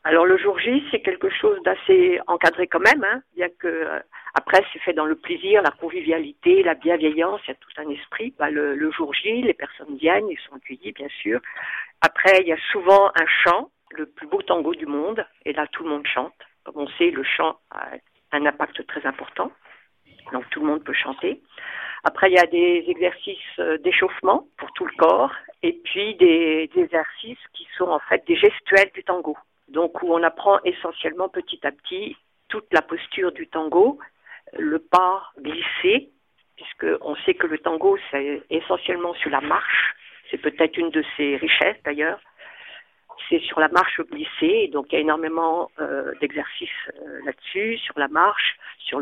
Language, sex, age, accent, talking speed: French, female, 50-69, French, 190 wpm